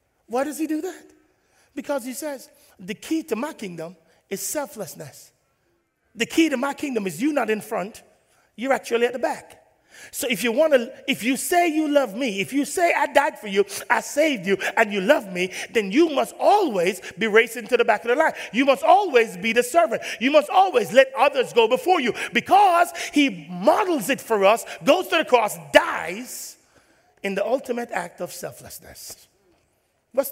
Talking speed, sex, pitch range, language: 195 wpm, male, 235-340 Hz, English